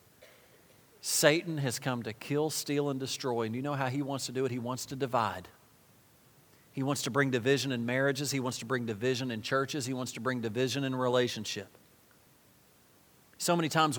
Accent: American